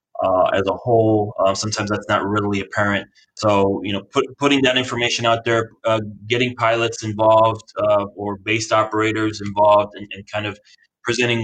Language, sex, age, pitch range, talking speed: English, male, 20-39, 100-115 Hz, 175 wpm